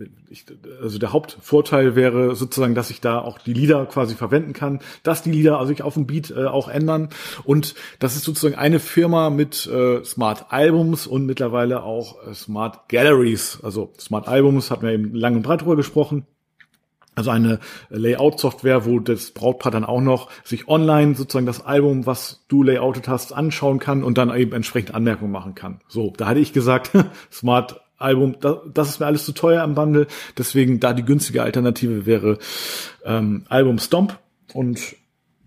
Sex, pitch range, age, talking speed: male, 120-150 Hz, 40-59, 180 wpm